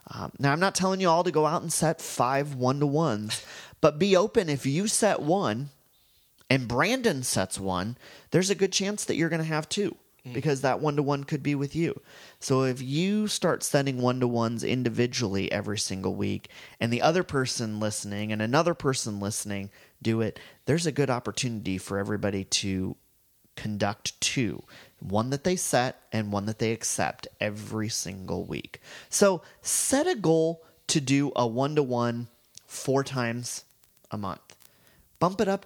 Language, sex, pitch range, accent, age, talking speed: English, male, 110-155 Hz, American, 30-49, 165 wpm